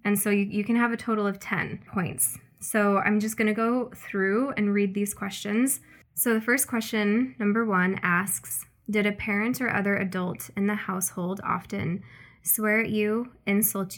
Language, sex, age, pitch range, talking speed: English, female, 20-39, 185-220 Hz, 180 wpm